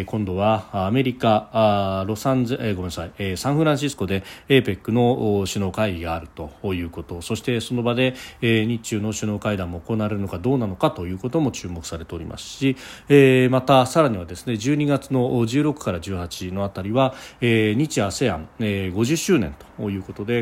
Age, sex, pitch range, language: 40-59, male, 95-130 Hz, Japanese